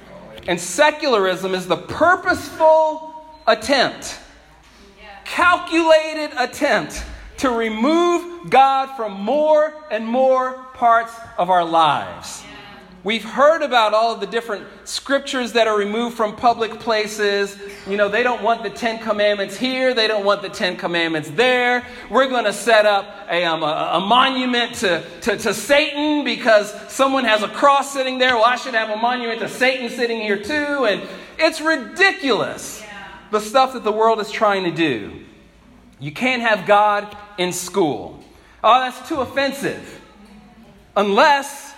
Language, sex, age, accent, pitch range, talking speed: English, male, 40-59, American, 205-285 Hz, 145 wpm